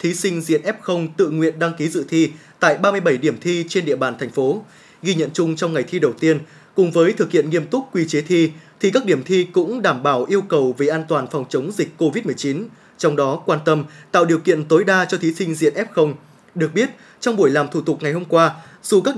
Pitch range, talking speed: 155-195 Hz, 245 wpm